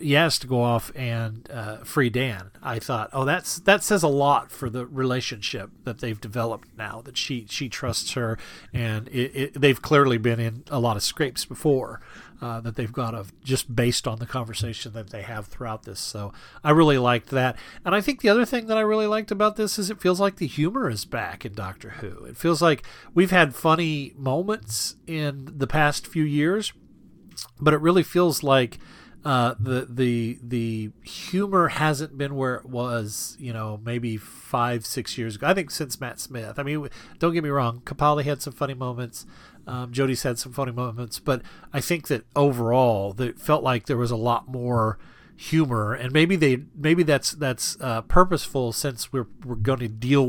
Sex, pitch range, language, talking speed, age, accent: male, 115-150 Hz, English, 200 wpm, 40-59, American